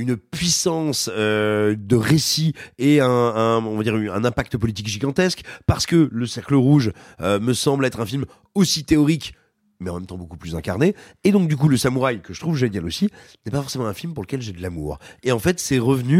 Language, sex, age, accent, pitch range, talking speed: French, male, 40-59, French, 100-145 Hz, 225 wpm